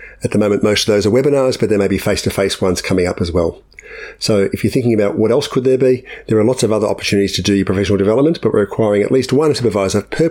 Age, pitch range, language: 50-69, 105-145 Hz, English